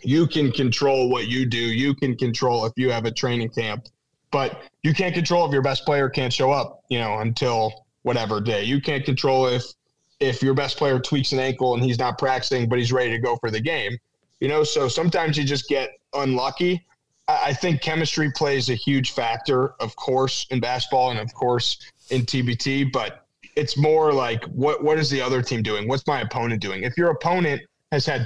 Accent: American